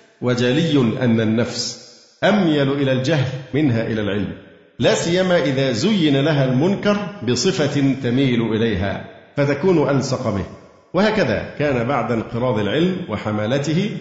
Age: 50-69